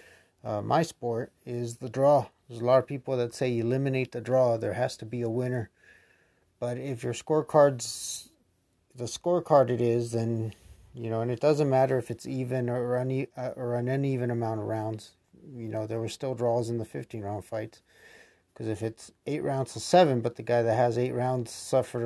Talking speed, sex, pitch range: 205 wpm, male, 115-135 Hz